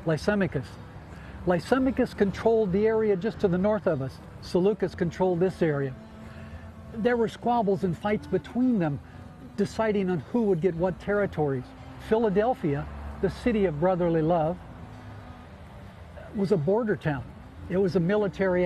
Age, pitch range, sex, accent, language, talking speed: 60-79, 145-195 Hz, male, American, English, 140 wpm